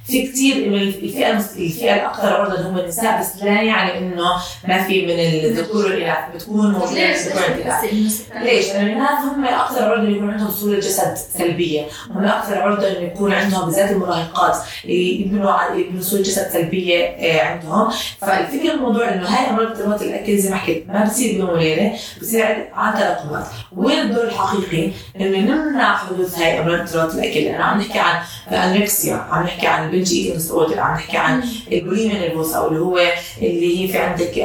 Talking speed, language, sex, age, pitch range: 170 wpm, Arabic, female, 20-39, 175-215 Hz